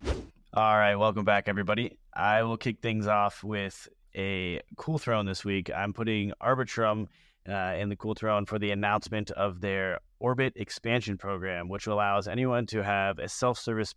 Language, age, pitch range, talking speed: English, 30-49, 95-110 Hz, 170 wpm